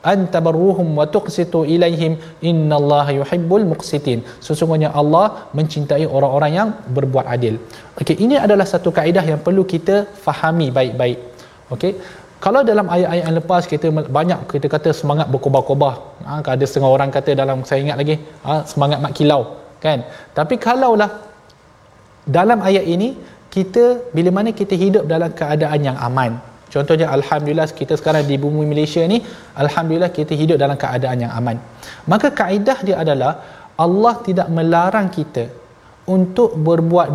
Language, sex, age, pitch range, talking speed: Malayalam, male, 20-39, 145-190 Hz, 140 wpm